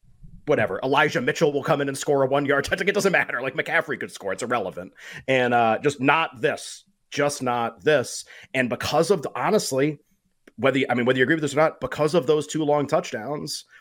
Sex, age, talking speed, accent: male, 30-49, 215 wpm, American